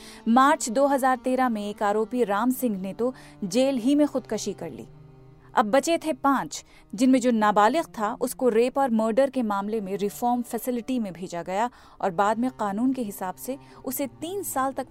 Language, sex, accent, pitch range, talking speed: Hindi, female, native, 205-265 Hz, 185 wpm